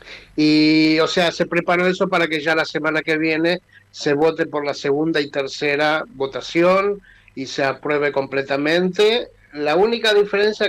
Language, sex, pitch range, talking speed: Spanish, male, 135-170 Hz, 155 wpm